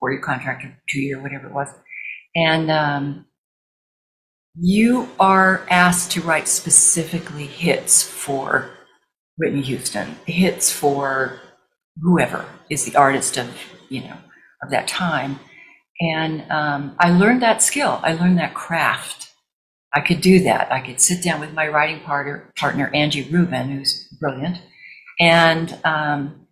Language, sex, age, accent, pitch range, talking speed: English, female, 50-69, American, 145-180 Hz, 140 wpm